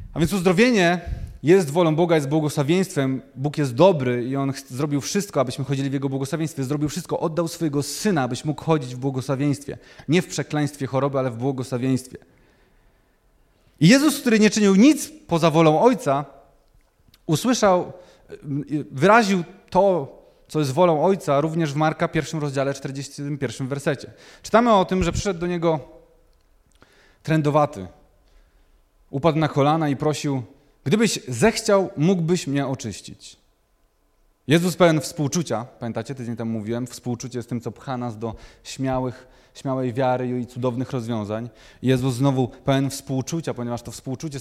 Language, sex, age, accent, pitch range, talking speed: Polish, male, 30-49, native, 125-165 Hz, 140 wpm